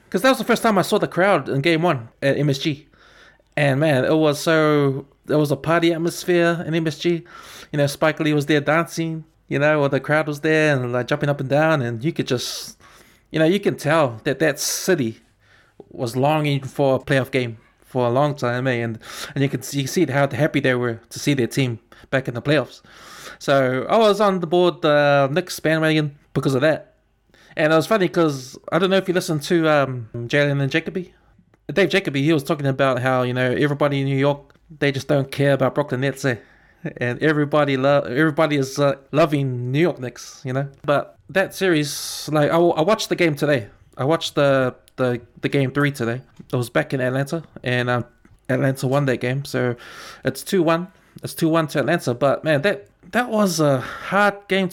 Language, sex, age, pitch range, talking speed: English, male, 20-39, 130-165 Hz, 215 wpm